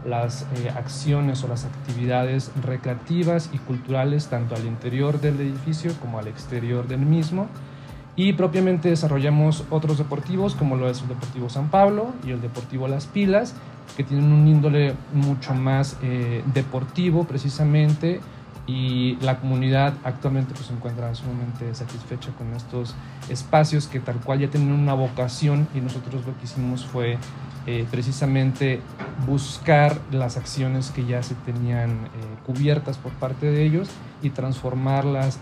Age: 40-59